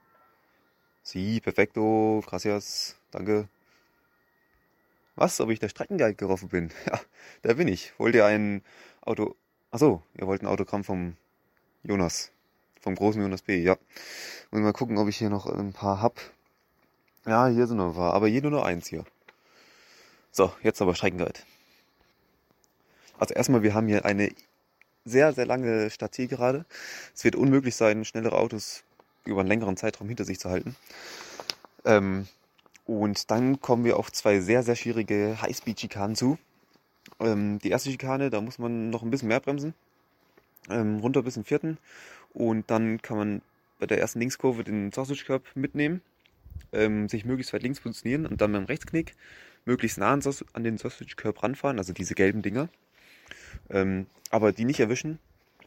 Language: German